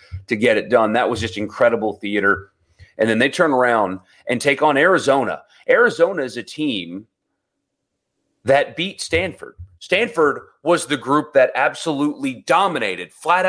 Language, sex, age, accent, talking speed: English, male, 30-49, American, 145 wpm